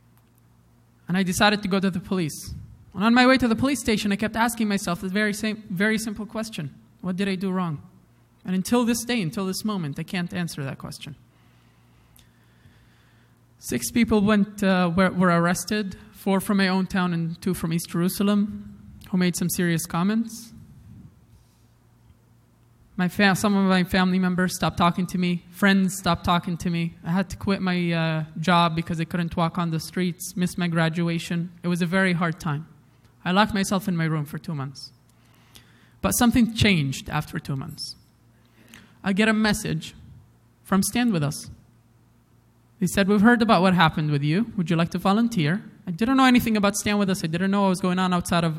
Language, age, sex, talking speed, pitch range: English, 20-39, male, 195 wpm, 160-200 Hz